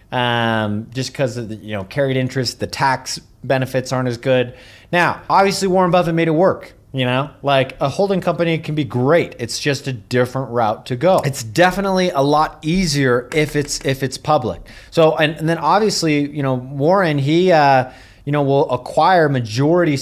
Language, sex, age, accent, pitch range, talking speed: English, male, 30-49, American, 120-150 Hz, 190 wpm